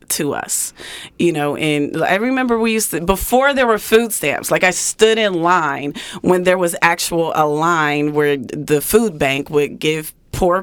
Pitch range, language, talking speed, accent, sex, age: 150-190 Hz, English, 185 wpm, American, female, 30-49